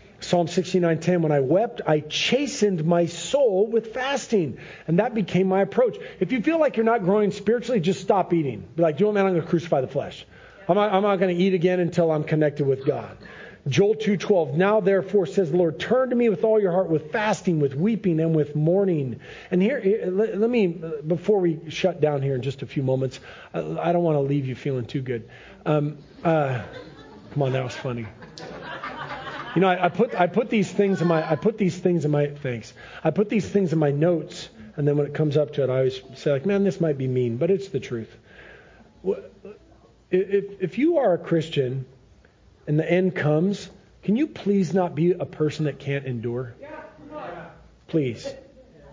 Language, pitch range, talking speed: English, 145-200 Hz, 210 wpm